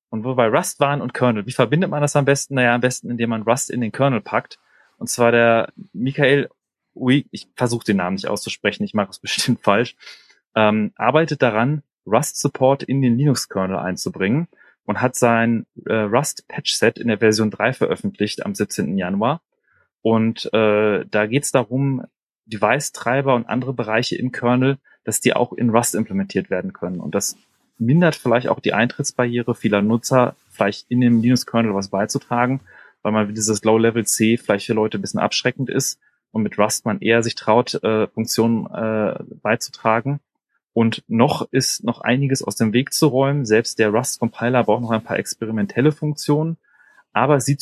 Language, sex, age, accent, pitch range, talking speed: German, male, 30-49, German, 110-135 Hz, 175 wpm